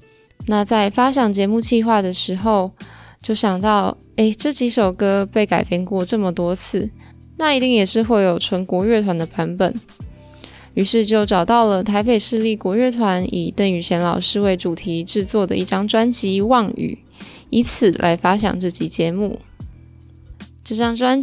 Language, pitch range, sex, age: Chinese, 190-230 Hz, female, 20-39